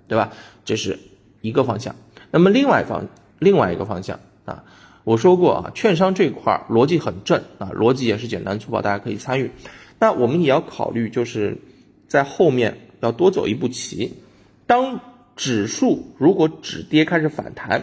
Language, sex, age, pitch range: Chinese, male, 20-39, 110-180 Hz